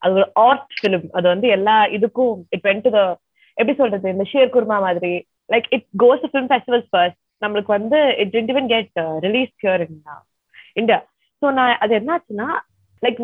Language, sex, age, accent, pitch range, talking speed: Tamil, female, 20-39, native, 185-240 Hz, 105 wpm